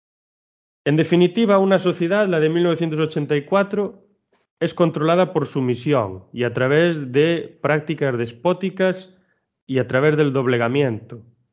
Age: 30-49